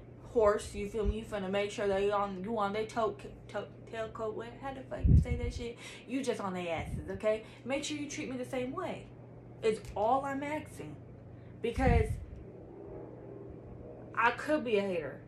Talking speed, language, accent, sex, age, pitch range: 200 wpm, English, American, female, 20-39, 175-230 Hz